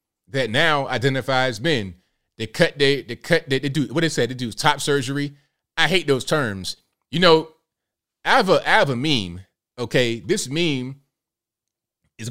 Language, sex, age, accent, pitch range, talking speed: English, male, 30-49, American, 110-145 Hz, 175 wpm